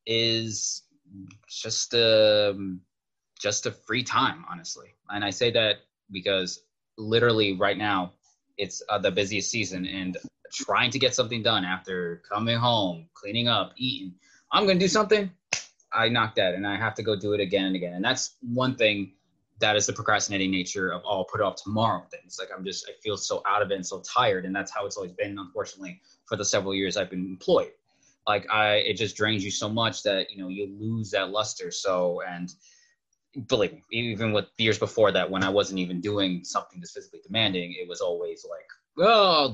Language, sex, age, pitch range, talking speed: English, male, 20-39, 95-120 Hz, 200 wpm